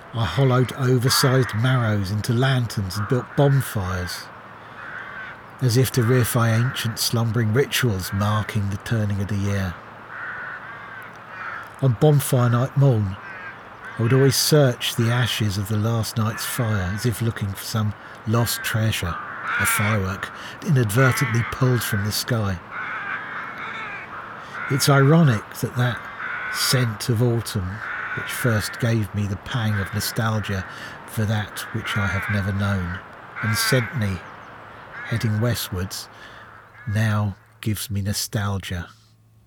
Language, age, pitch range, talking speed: English, 40-59, 105-125 Hz, 125 wpm